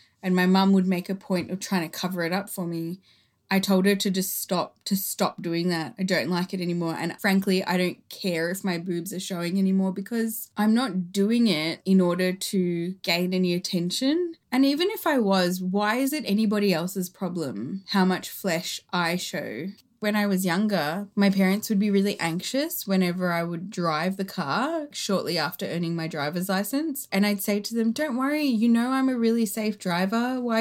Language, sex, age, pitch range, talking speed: English, female, 20-39, 180-220 Hz, 205 wpm